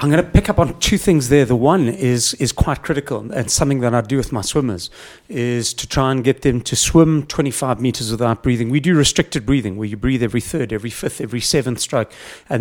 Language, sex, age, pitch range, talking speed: English, male, 40-59, 125-155 Hz, 240 wpm